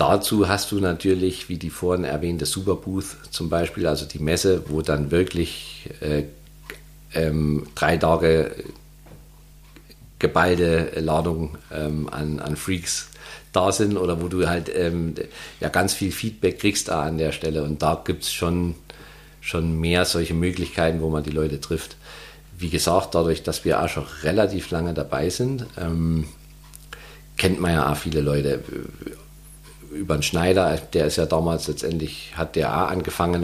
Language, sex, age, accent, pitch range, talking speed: German, male, 50-69, German, 75-85 Hz, 155 wpm